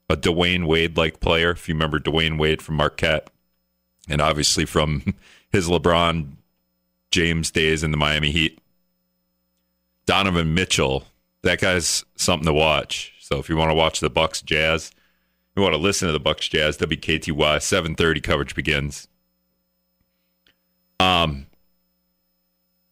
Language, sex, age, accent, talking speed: English, male, 40-59, American, 150 wpm